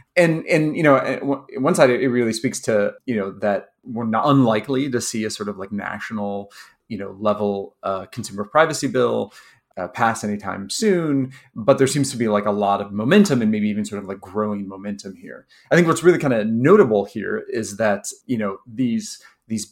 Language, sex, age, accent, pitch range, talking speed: English, male, 30-49, American, 105-140 Hz, 205 wpm